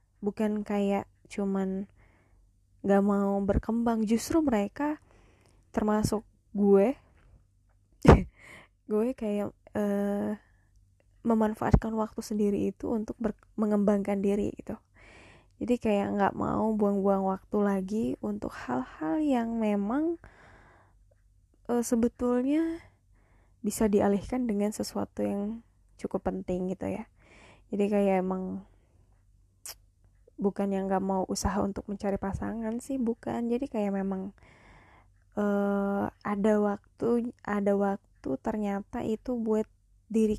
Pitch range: 170-220 Hz